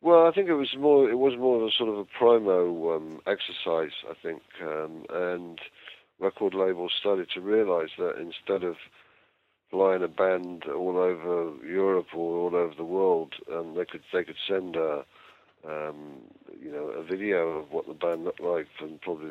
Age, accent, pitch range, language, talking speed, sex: 50-69, British, 80-95 Hz, English, 185 wpm, male